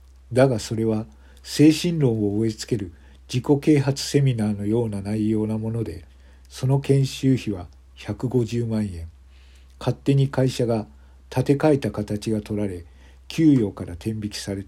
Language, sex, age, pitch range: Japanese, male, 50-69, 75-125 Hz